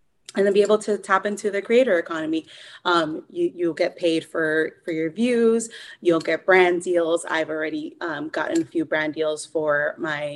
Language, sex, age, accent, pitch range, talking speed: English, female, 20-39, American, 165-220 Hz, 190 wpm